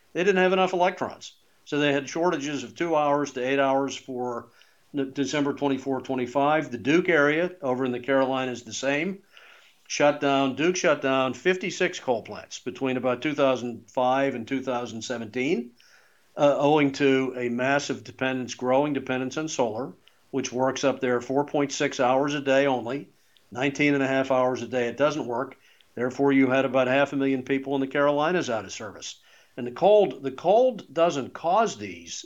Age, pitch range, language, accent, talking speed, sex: 50-69, 130-155 Hz, English, American, 170 wpm, male